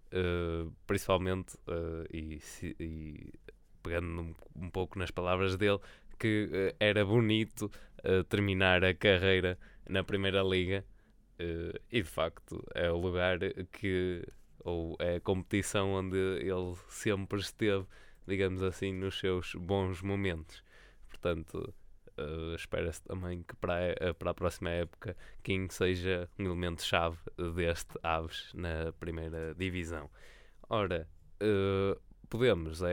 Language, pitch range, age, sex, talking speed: Portuguese, 85-100 Hz, 20-39, male, 110 wpm